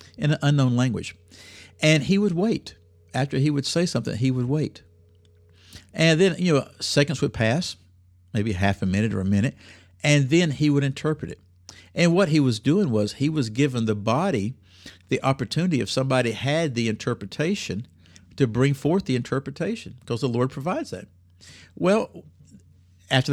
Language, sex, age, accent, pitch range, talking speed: English, male, 50-69, American, 95-145 Hz, 170 wpm